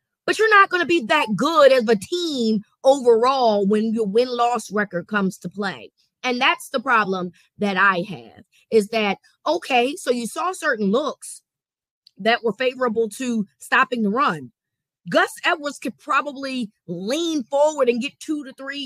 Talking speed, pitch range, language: 165 wpm, 205-275 Hz, English